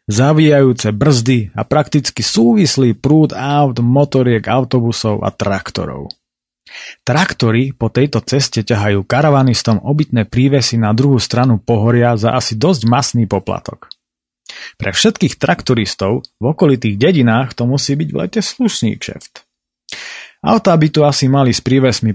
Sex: male